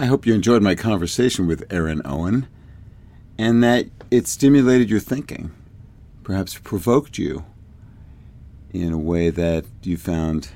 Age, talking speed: 50-69, 135 wpm